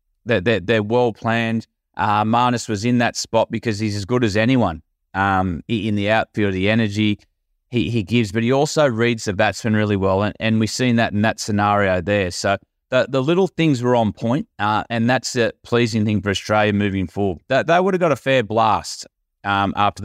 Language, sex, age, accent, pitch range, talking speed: English, male, 20-39, Australian, 95-115 Hz, 205 wpm